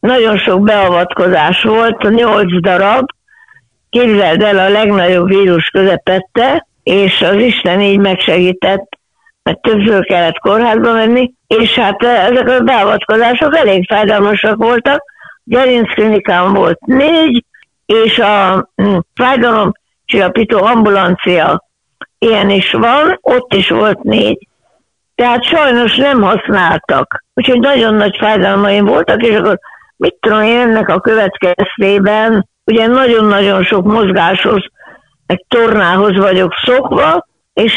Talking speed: 120 wpm